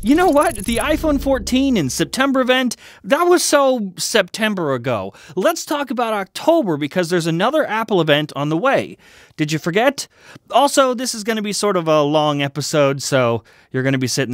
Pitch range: 150-240 Hz